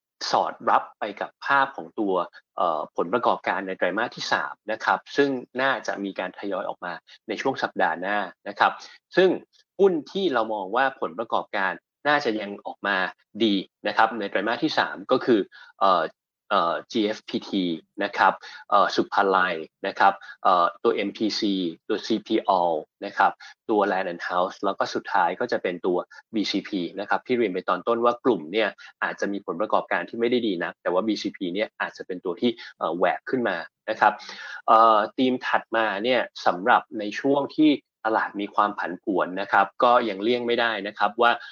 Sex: male